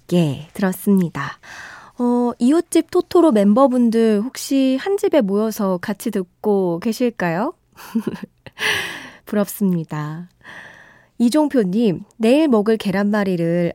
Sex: female